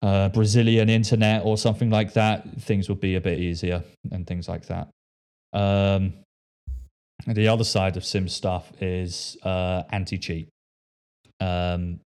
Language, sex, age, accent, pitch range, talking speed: English, male, 20-39, British, 85-105 Hz, 140 wpm